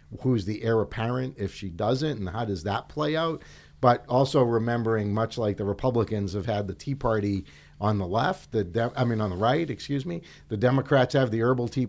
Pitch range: 100-125 Hz